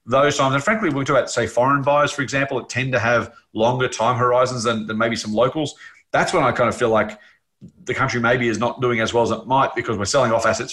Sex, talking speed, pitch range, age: male, 270 wpm, 115-160 Hz, 30-49